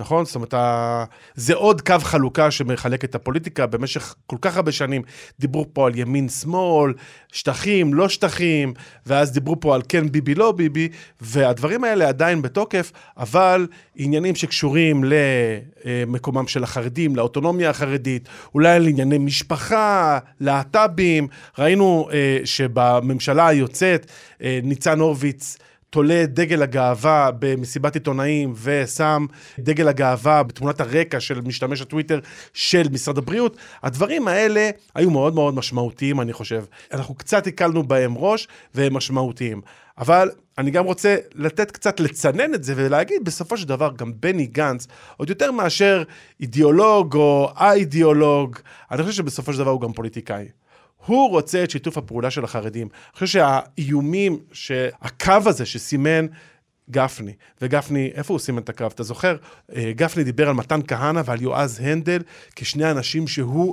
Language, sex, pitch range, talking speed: Hebrew, male, 130-170 Hz, 135 wpm